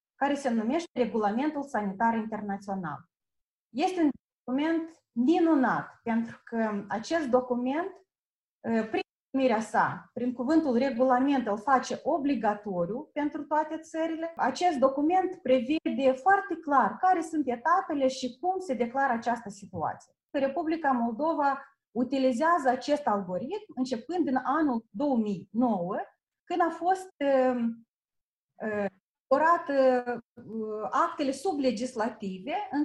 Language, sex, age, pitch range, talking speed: Romanian, female, 30-49, 235-315 Hz, 105 wpm